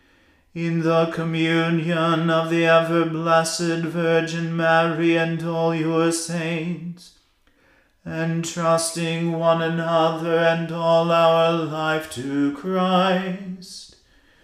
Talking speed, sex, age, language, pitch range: 95 wpm, male, 40-59, English, 165-175 Hz